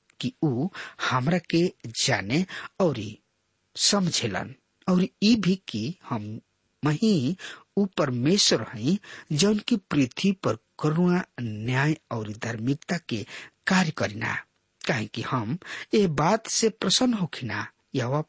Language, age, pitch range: English, 50-69, 115-175 Hz